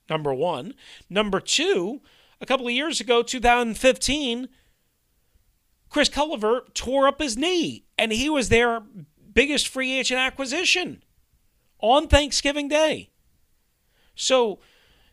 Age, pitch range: 40-59, 190-255 Hz